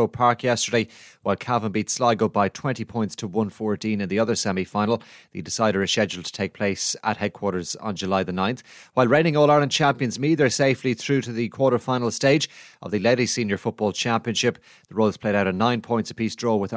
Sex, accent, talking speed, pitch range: male, Irish, 205 wpm, 110-145 Hz